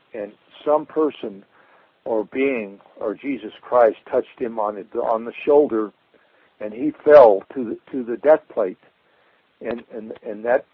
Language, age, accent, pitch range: English, 60-79, American, 110-135 Hz